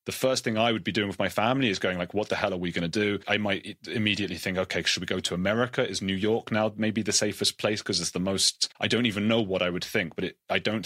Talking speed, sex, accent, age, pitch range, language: 300 wpm, male, British, 30-49, 90-115 Hz, English